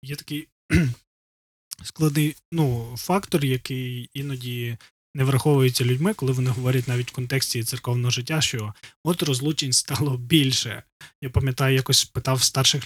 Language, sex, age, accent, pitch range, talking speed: Ukrainian, male, 20-39, native, 125-150 Hz, 130 wpm